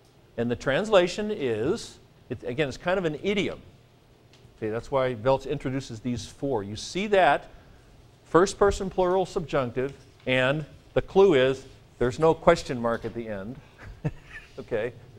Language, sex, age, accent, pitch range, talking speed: English, male, 50-69, American, 115-150 Hz, 135 wpm